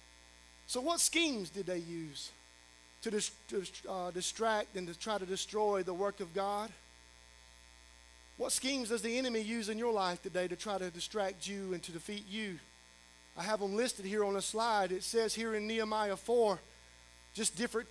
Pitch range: 200-295 Hz